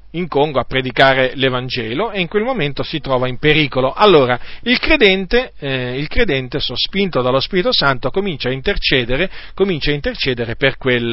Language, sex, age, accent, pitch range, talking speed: Italian, male, 40-59, native, 125-185 Hz, 165 wpm